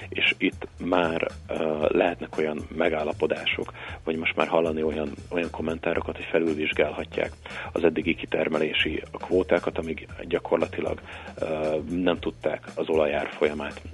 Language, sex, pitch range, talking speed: Hungarian, male, 75-85 Hz, 115 wpm